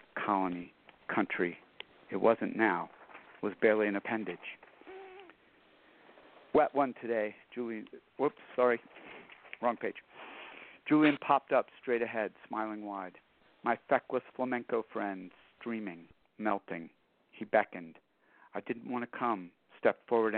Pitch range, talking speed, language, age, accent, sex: 105-125 Hz, 115 wpm, English, 50-69, American, male